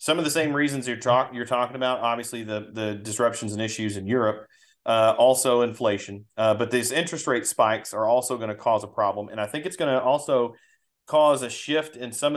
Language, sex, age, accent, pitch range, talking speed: English, male, 40-59, American, 110-140 Hz, 225 wpm